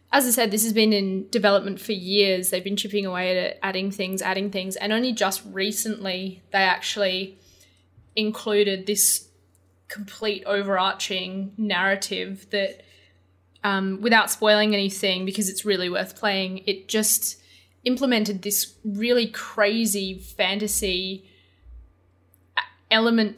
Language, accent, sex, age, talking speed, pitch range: English, Australian, female, 20-39, 125 wpm, 190-210 Hz